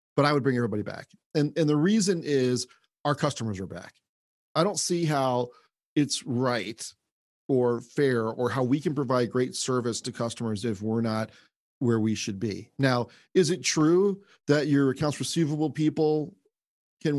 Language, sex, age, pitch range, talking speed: English, male, 40-59, 120-150 Hz, 170 wpm